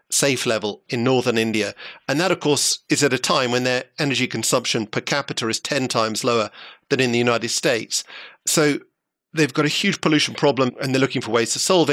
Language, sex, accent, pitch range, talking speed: English, male, British, 120-150 Hz, 210 wpm